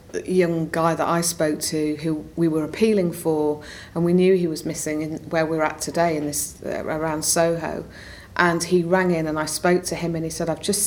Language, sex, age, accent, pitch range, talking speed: English, female, 40-59, British, 155-180 Hz, 225 wpm